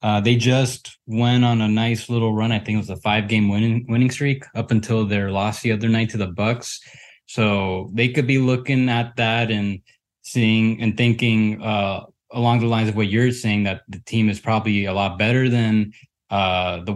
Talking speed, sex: 210 wpm, male